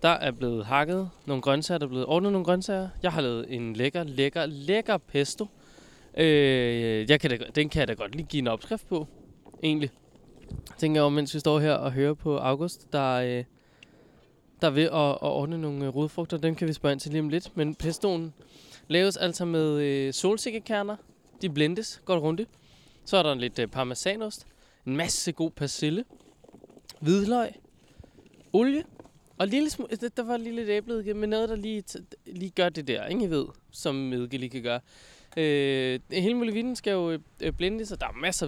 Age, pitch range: 20-39, 135-185 Hz